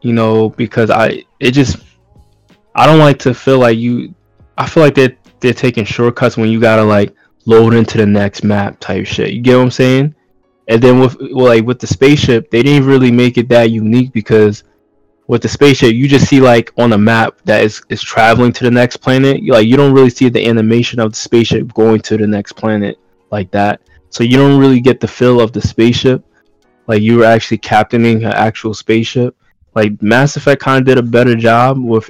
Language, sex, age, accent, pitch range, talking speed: English, male, 20-39, American, 110-125 Hz, 215 wpm